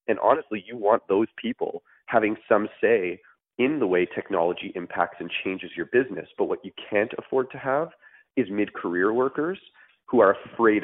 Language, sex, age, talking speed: English, male, 30-49, 170 wpm